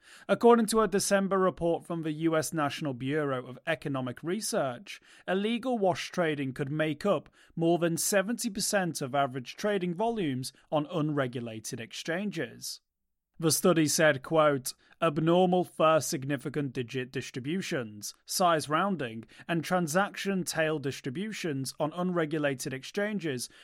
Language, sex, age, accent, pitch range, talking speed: English, male, 30-49, British, 140-185 Hz, 120 wpm